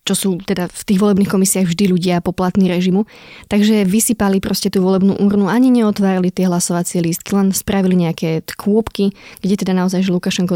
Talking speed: 180 wpm